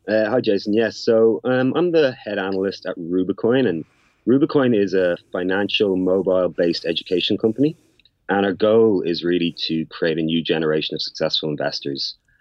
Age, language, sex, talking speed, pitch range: 30-49, English, male, 165 wpm, 90-105 Hz